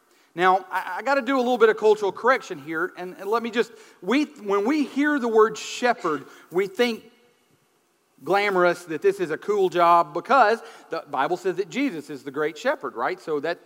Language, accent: English, American